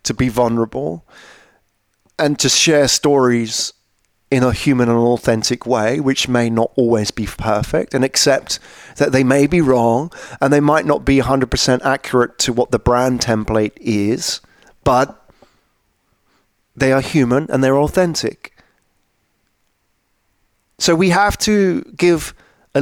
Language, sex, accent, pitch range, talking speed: English, male, British, 110-150 Hz, 135 wpm